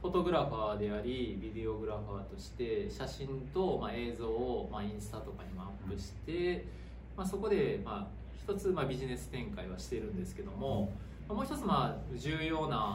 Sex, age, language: male, 20-39, Japanese